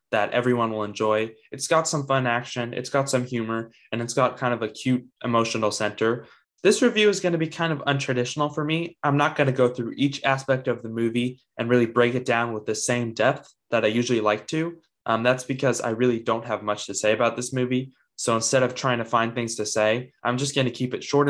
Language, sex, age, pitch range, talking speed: English, male, 20-39, 115-140 Hz, 245 wpm